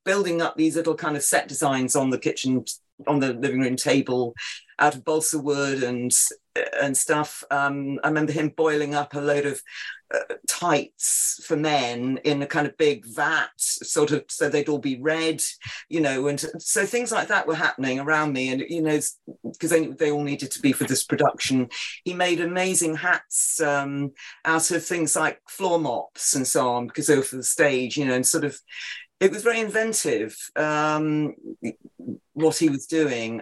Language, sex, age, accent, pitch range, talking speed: English, female, 50-69, British, 135-160 Hz, 190 wpm